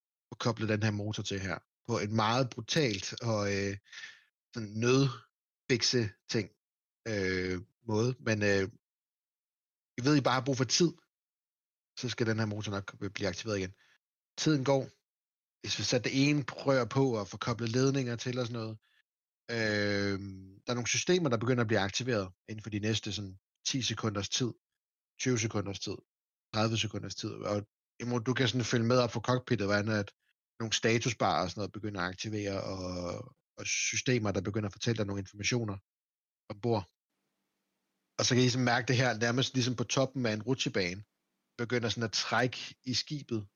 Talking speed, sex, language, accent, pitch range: 180 wpm, male, Danish, native, 100-125 Hz